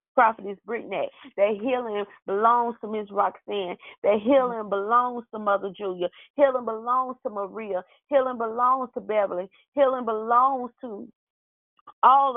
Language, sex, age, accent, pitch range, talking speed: English, female, 30-49, American, 195-235 Hz, 130 wpm